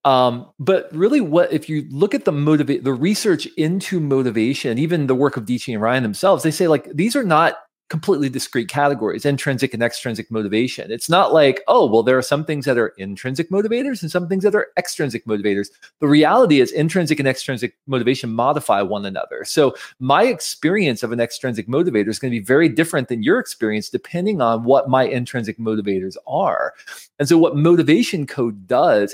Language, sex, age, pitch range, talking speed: English, male, 40-59, 115-155 Hz, 195 wpm